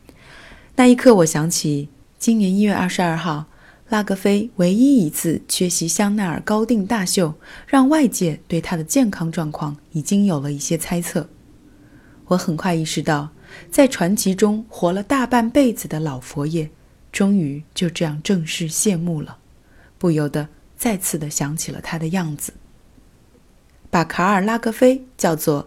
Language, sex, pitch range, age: Chinese, female, 150-200 Hz, 20-39